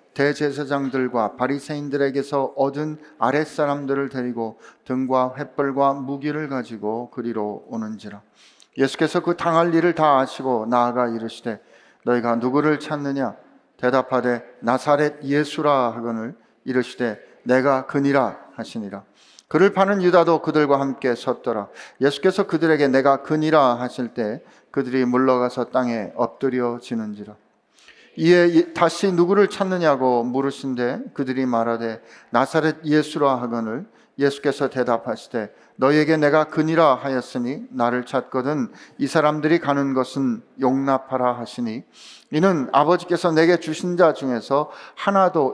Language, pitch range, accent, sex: Korean, 125-155 Hz, native, male